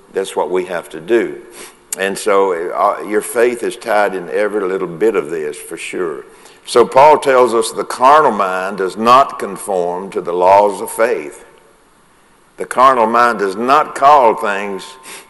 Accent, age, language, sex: American, 60-79, English, male